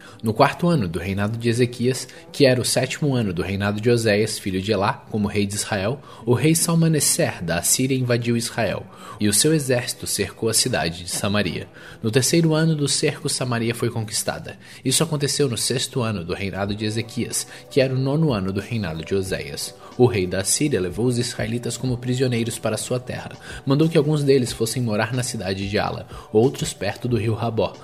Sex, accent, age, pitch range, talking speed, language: male, Brazilian, 20-39, 105-135 Hz, 200 wpm, Portuguese